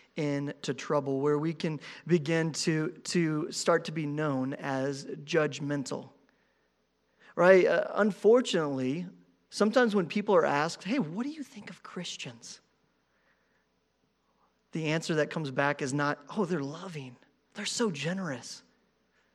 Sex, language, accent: male, English, American